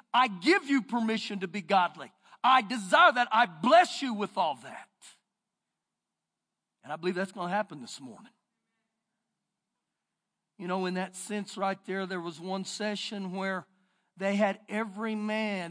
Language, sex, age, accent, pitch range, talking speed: English, male, 50-69, American, 195-255 Hz, 155 wpm